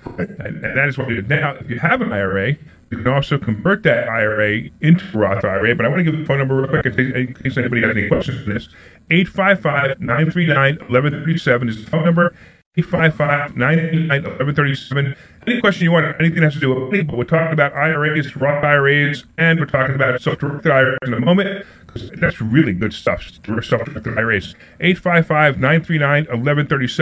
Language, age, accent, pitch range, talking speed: English, 40-59, American, 125-160 Hz, 195 wpm